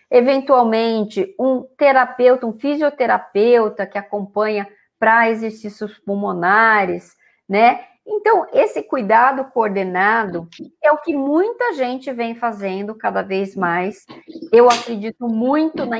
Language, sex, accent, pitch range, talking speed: Portuguese, female, Brazilian, 205-265 Hz, 110 wpm